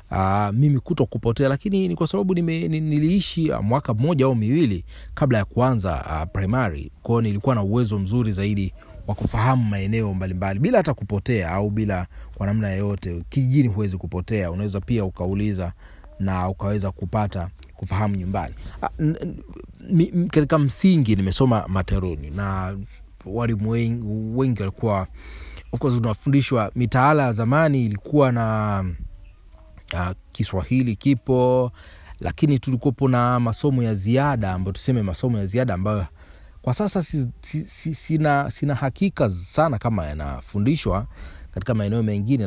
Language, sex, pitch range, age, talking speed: Swahili, male, 95-130 Hz, 30-49, 130 wpm